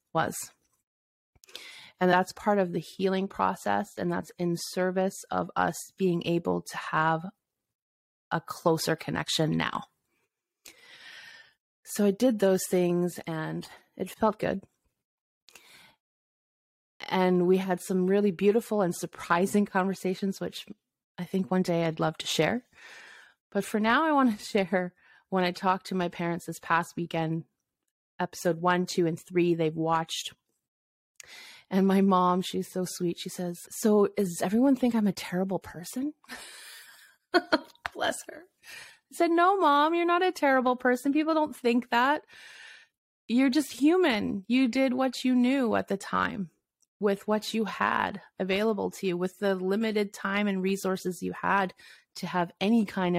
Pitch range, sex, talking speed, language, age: 175-230 Hz, female, 150 wpm, English, 30-49